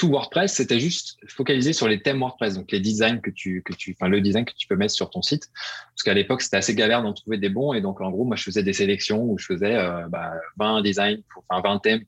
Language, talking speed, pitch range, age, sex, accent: French, 270 wpm, 95-120 Hz, 20-39, male, French